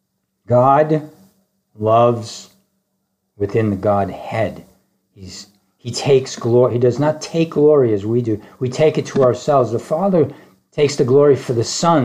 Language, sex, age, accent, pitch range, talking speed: English, male, 50-69, American, 120-165 Hz, 150 wpm